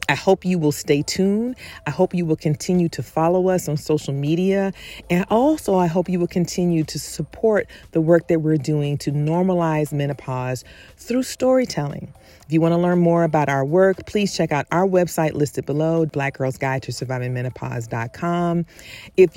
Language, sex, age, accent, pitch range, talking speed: English, female, 40-59, American, 145-185 Hz, 165 wpm